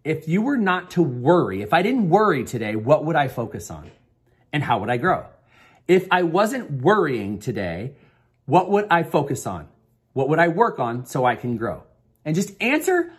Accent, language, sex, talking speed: American, English, male, 195 wpm